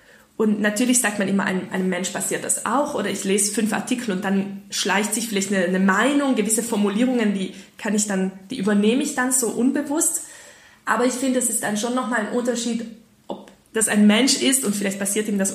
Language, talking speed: German, 215 wpm